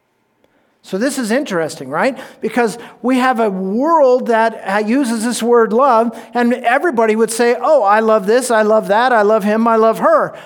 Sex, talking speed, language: male, 185 wpm, English